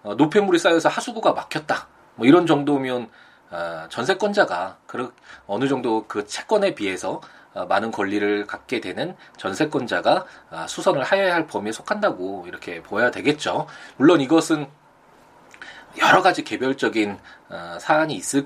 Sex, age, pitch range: male, 20-39, 115-190 Hz